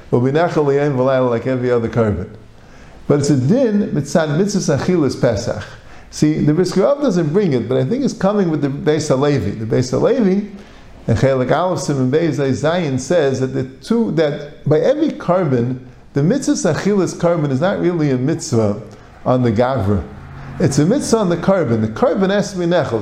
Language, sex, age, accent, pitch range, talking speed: English, male, 50-69, American, 130-195 Hz, 175 wpm